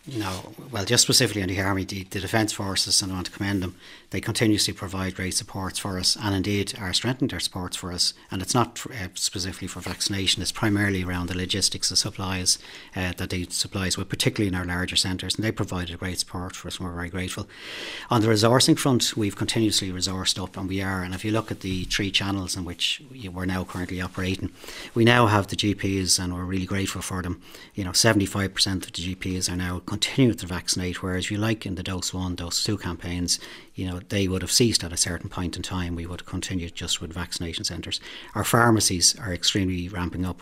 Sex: male